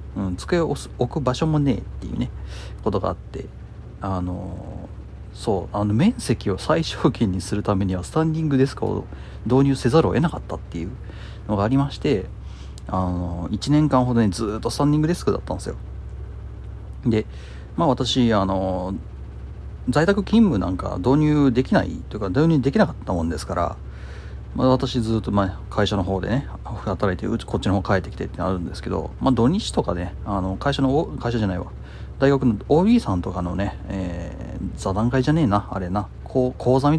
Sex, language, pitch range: male, Japanese, 90-130 Hz